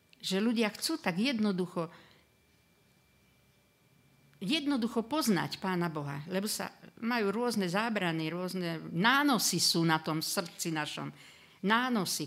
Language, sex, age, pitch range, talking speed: Slovak, female, 50-69, 160-215 Hz, 110 wpm